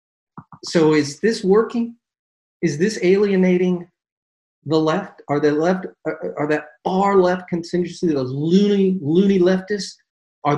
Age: 40-59